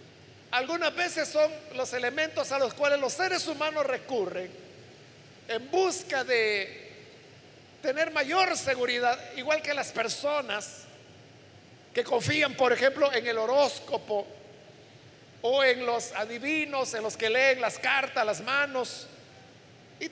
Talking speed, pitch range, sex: 125 wpm, 230-310 Hz, male